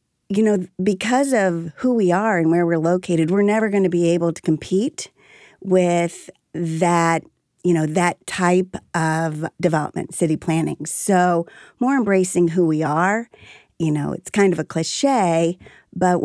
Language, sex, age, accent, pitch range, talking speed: English, female, 40-59, American, 165-200 Hz, 160 wpm